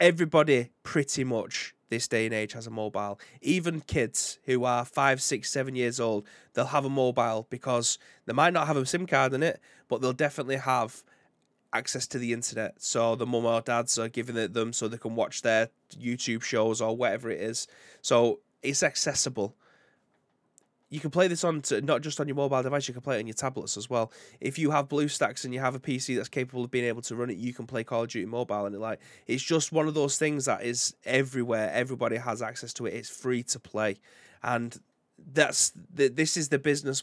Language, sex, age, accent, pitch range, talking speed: English, male, 20-39, British, 115-140 Hz, 220 wpm